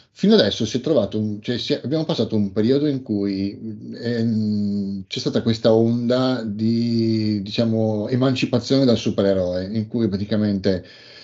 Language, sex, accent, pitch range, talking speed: Italian, male, native, 100-125 Hz, 145 wpm